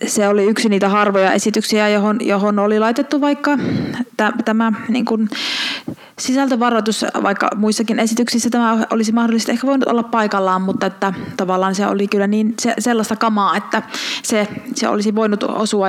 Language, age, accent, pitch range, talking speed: Finnish, 30-49, native, 210-280 Hz, 160 wpm